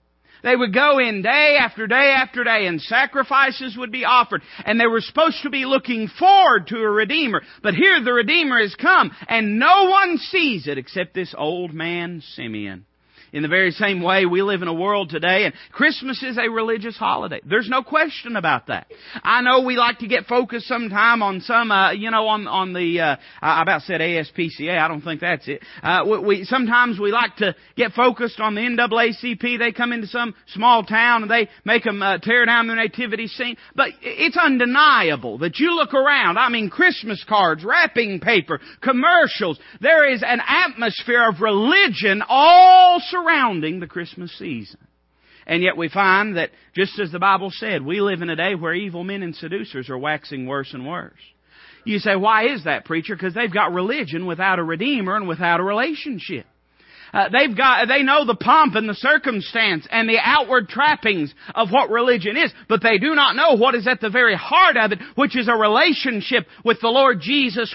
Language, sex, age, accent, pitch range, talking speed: English, male, 40-59, American, 185-255 Hz, 200 wpm